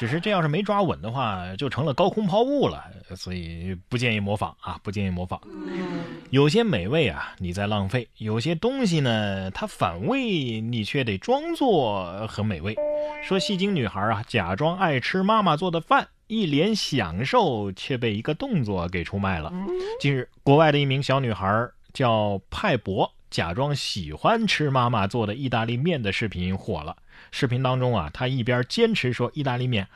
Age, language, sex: 30-49, Chinese, male